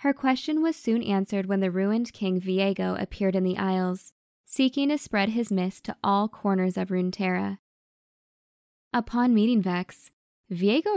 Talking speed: 155 wpm